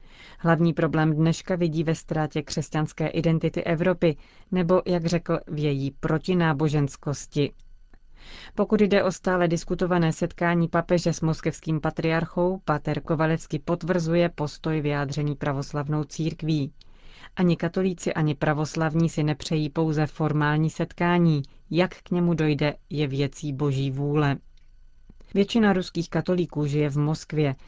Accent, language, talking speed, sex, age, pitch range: native, Czech, 120 wpm, female, 30-49, 150-170 Hz